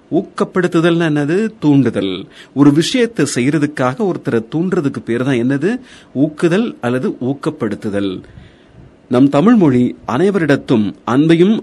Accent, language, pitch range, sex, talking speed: native, Tamil, 125-195 Hz, male, 95 wpm